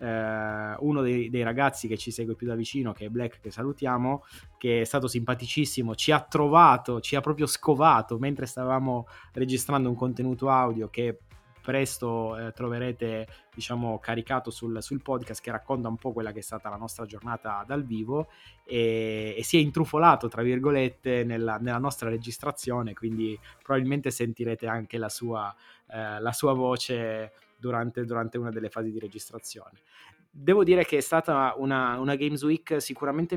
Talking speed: 165 wpm